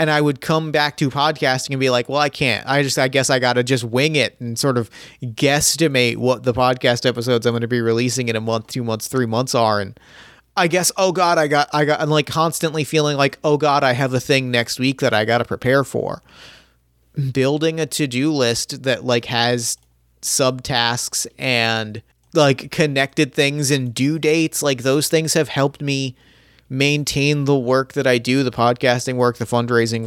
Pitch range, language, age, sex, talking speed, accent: 120-145 Hz, English, 30-49, male, 210 wpm, American